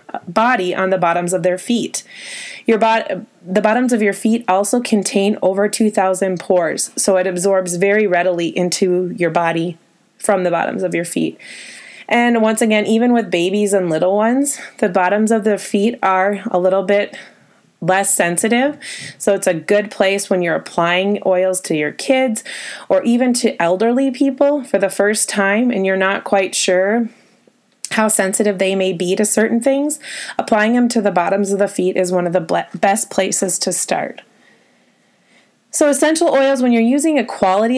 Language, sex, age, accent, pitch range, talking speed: English, female, 20-39, American, 190-245 Hz, 175 wpm